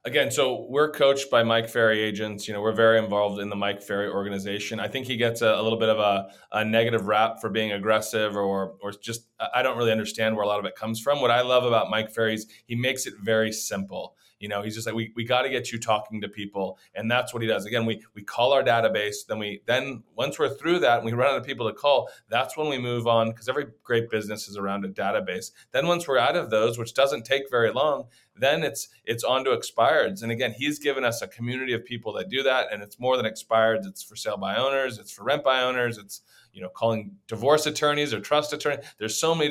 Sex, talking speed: male, 255 wpm